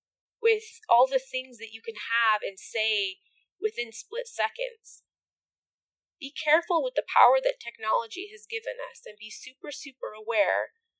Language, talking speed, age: English, 155 wpm, 20-39